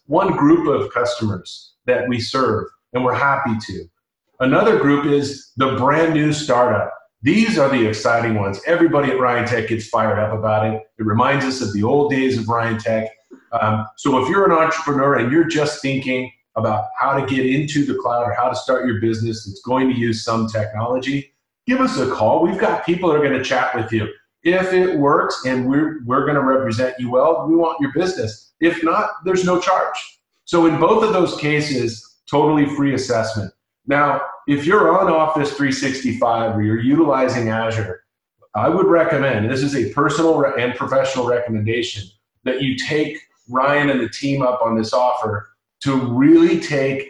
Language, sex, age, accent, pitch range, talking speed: English, male, 40-59, American, 115-145 Hz, 190 wpm